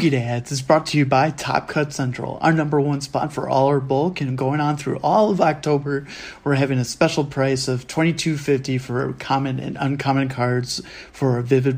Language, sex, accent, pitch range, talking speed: English, male, American, 135-150 Hz, 200 wpm